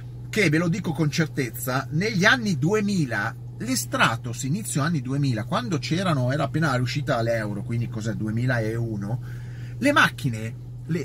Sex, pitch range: male, 120-160 Hz